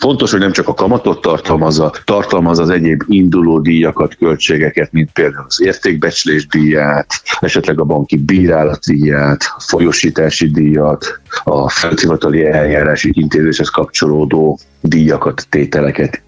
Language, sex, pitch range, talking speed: Hungarian, male, 75-90 Hz, 120 wpm